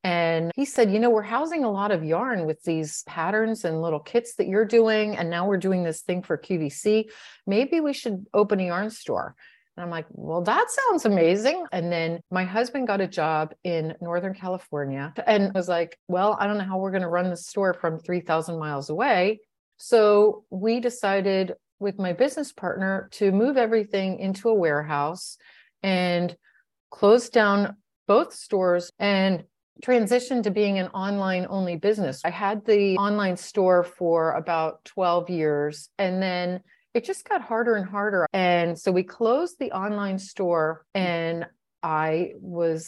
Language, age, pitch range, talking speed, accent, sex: English, 40-59, 175-215 Hz, 170 wpm, American, female